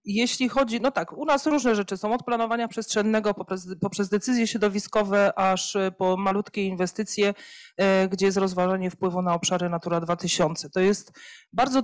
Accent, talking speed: native, 155 wpm